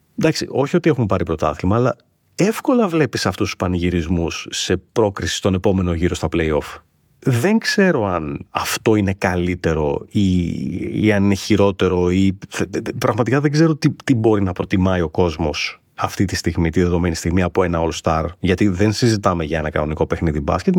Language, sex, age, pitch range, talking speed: Greek, male, 30-49, 85-110 Hz, 170 wpm